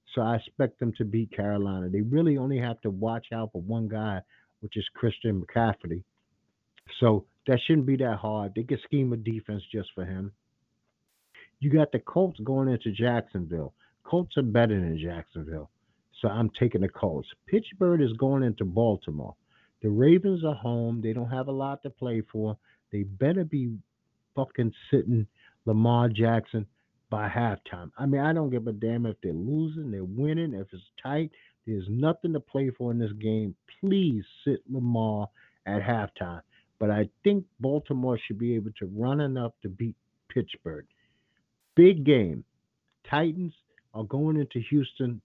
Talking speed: 165 wpm